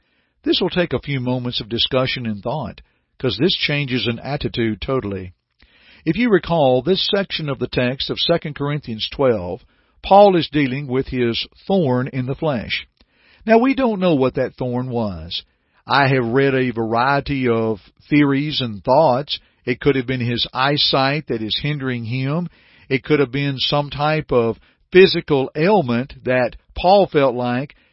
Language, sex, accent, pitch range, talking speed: English, male, American, 125-165 Hz, 165 wpm